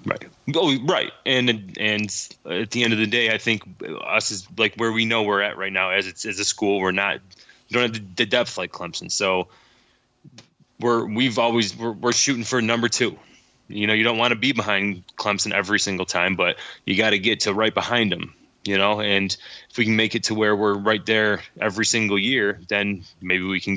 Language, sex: English, male